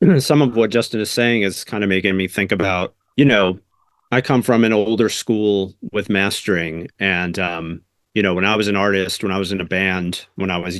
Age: 40-59